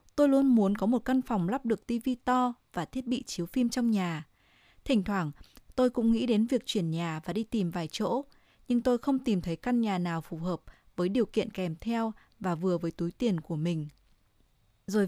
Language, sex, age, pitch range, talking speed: Vietnamese, female, 20-39, 175-250 Hz, 220 wpm